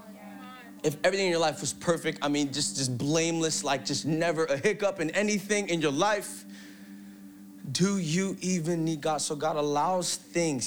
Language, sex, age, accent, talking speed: English, male, 30-49, American, 175 wpm